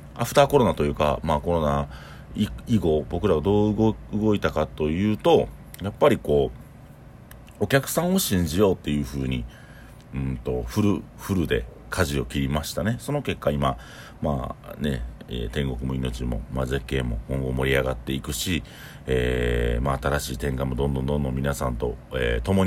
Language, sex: Japanese, male